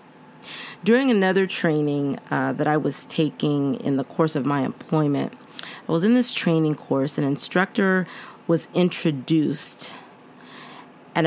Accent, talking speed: American, 135 wpm